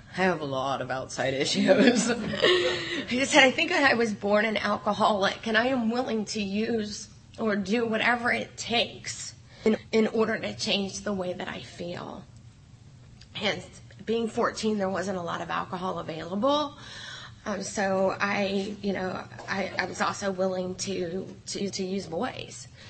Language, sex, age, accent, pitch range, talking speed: English, female, 30-49, American, 175-215 Hz, 160 wpm